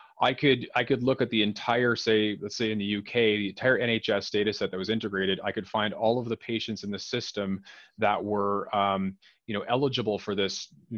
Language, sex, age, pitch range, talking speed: English, male, 30-49, 105-125 Hz, 225 wpm